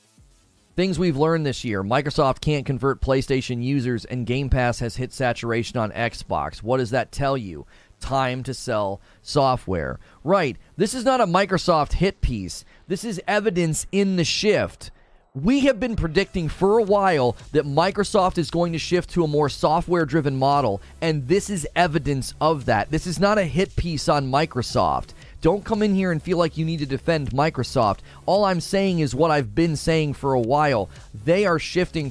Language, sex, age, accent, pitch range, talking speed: English, male, 30-49, American, 125-165 Hz, 185 wpm